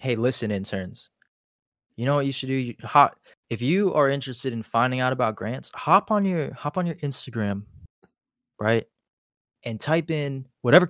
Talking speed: 170 wpm